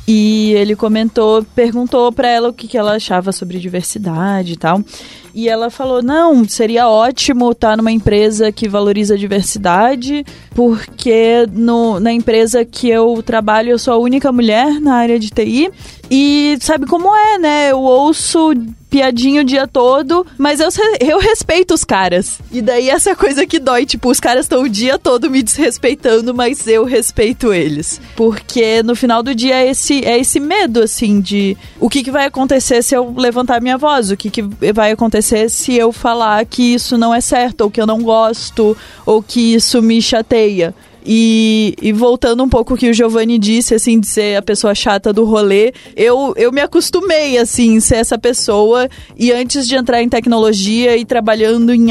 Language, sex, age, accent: Portuguese, female, 20-39, Brazilian